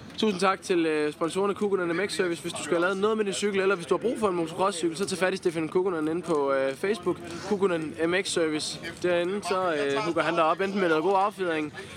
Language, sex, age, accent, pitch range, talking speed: Danish, male, 20-39, native, 145-180 Hz, 235 wpm